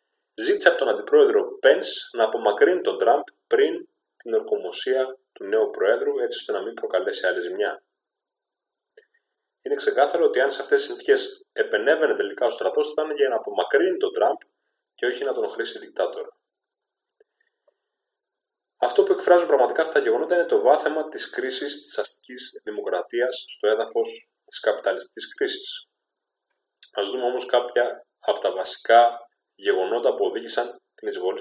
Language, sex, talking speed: Greek, male, 150 wpm